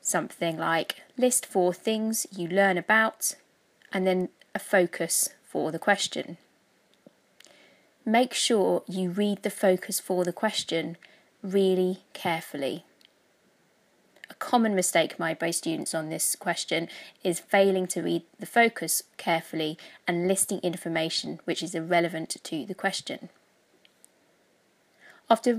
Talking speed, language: 120 wpm, English